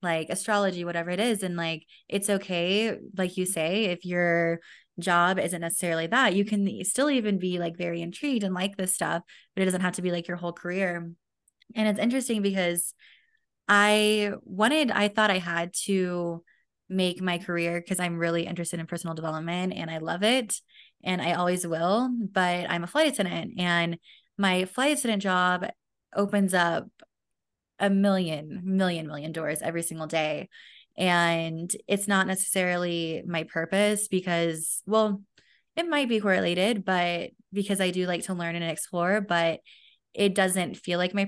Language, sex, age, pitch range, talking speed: English, female, 20-39, 170-200 Hz, 170 wpm